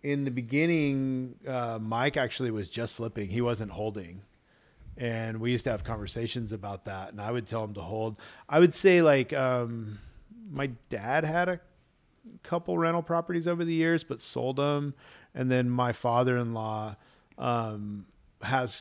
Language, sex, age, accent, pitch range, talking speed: English, male, 40-59, American, 105-135 Hz, 160 wpm